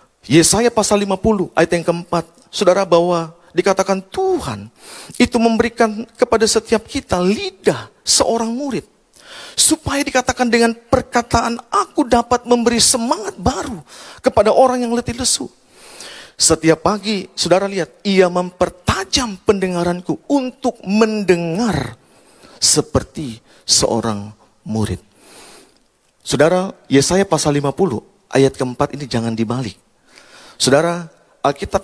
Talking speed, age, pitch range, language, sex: 105 wpm, 40-59, 155-230 Hz, Indonesian, male